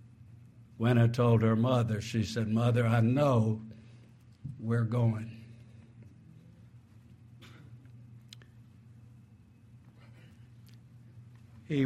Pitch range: 115-125 Hz